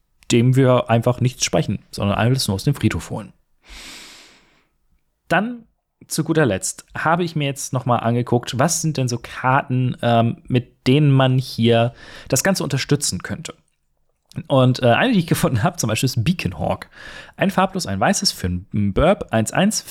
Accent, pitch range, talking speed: German, 105-150 Hz, 170 wpm